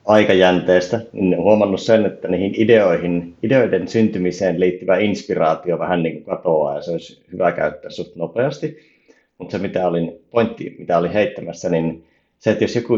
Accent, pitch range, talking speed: native, 85-110 Hz, 160 wpm